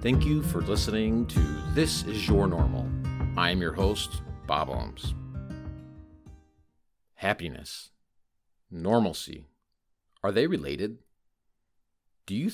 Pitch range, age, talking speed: 80-105 Hz, 50-69, 105 wpm